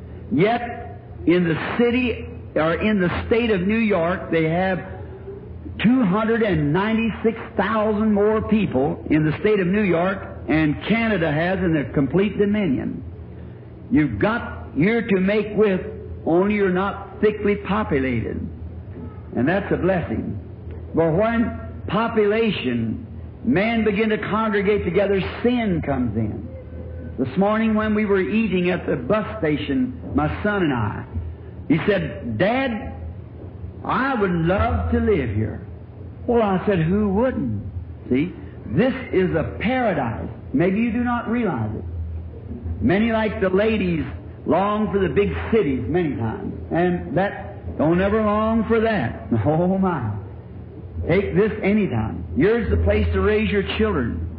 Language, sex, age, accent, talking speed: English, male, 60-79, American, 140 wpm